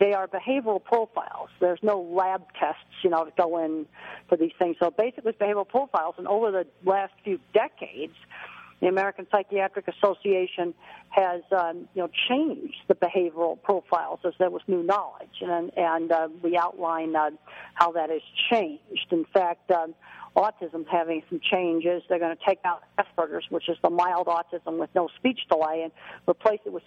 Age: 50-69